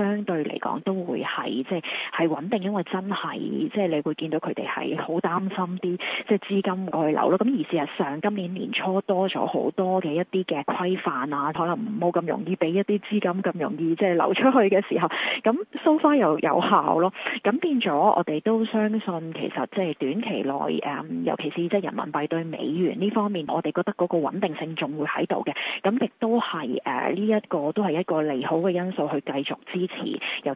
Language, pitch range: Chinese, 160-200 Hz